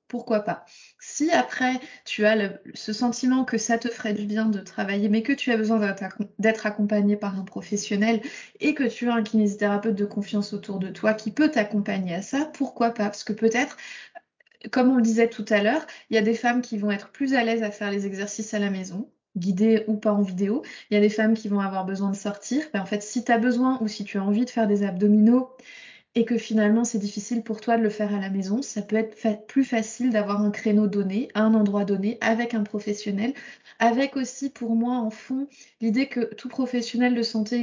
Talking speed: 230 wpm